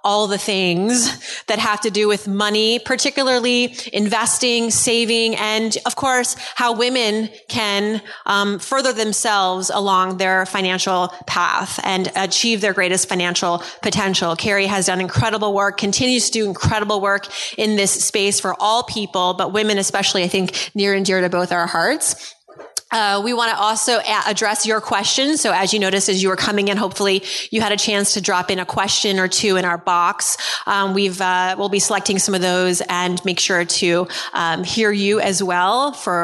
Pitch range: 190-235 Hz